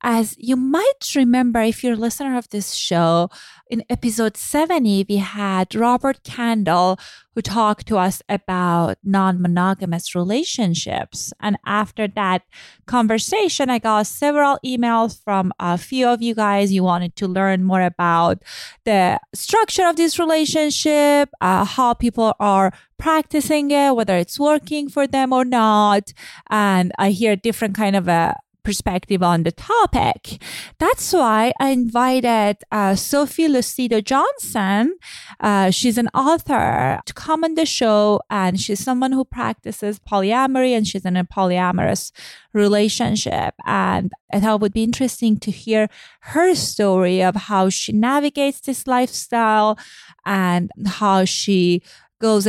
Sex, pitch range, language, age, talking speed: female, 190-255 Hz, English, 20-39, 140 wpm